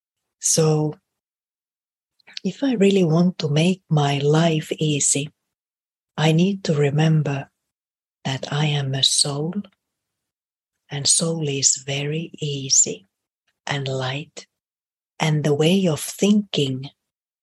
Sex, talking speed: female, 105 wpm